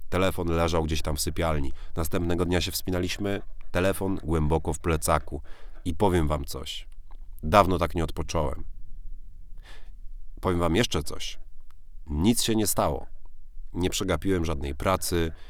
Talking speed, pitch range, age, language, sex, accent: 130 wpm, 80-95 Hz, 40-59, Polish, male, native